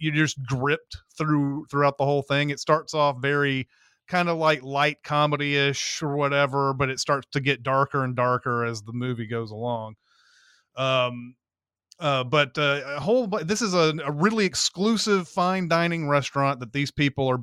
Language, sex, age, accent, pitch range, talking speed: English, male, 30-49, American, 125-150 Hz, 180 wpm